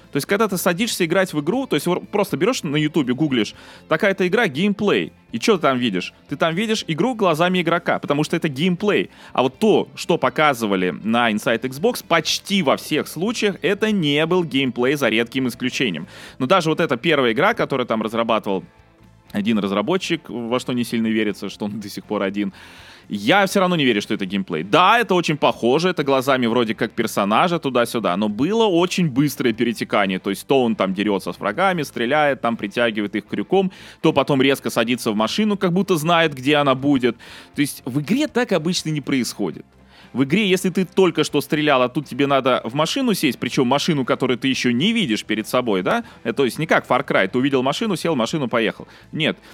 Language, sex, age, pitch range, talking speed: Russian, male, 20-39, 120-180 Hz, 205 wpm